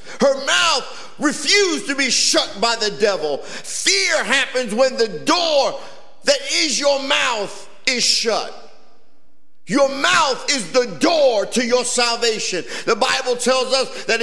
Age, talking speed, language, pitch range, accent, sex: 50-69, 140 wpm, English, 225-270 Hz, American, male